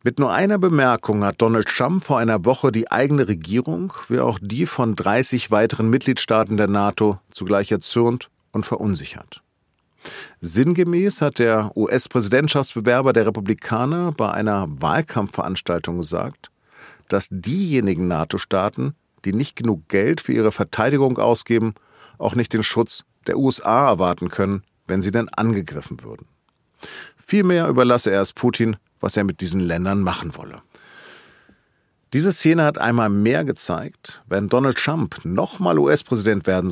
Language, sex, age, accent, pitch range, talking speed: German, male, 50-69, German, 100-125 Hz, 135 wpm